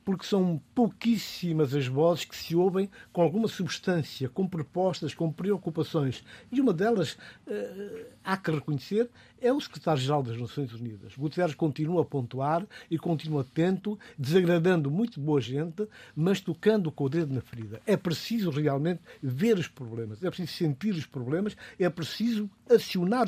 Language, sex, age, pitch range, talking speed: Portuguese, male, 60-79, 140-190 Hz, 155 wpm